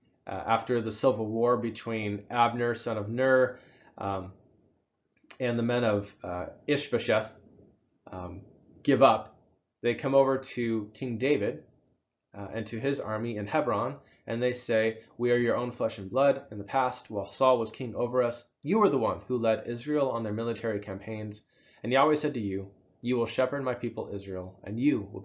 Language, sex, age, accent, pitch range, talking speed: English, male, 20-39, American, 105-130 Hz, 185 wpm